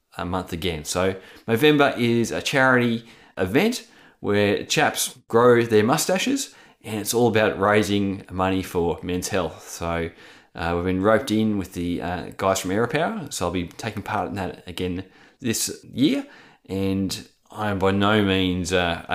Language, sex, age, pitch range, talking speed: English, male, 20-39, 85-110 Hz, 165 wpm